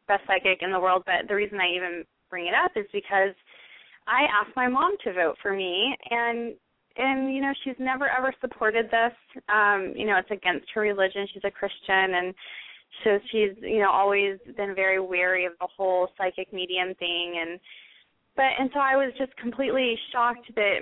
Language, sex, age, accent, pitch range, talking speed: English, female, 20-39, American, 190-230 Hz, 195 wpm